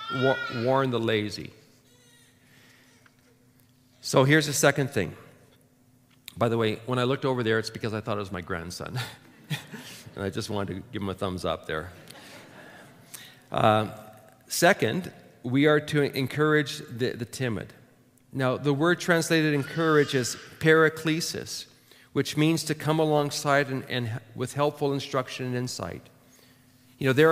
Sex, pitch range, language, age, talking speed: male, 125-145 Hz, English, 40-59, 145 wpm